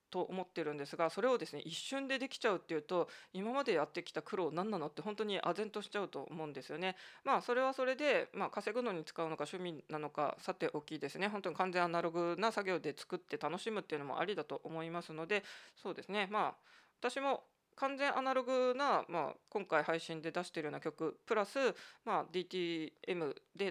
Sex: female